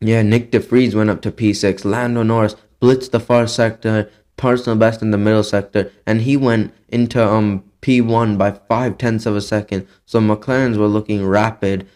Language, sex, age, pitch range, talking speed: English, male, 10-29, 105-115 Hz, 180 wpm